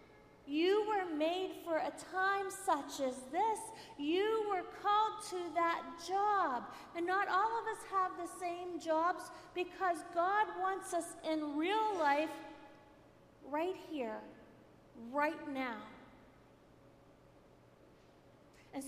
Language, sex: English, female